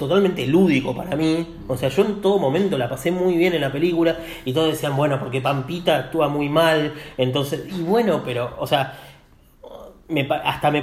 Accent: Argentinian